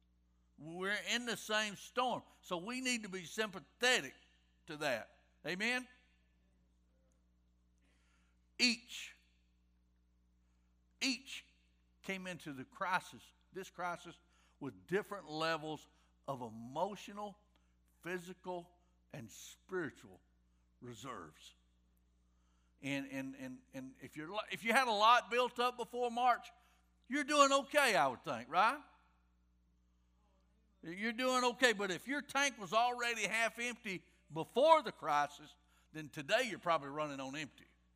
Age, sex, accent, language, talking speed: 60-79, male, American, English, 115 wpm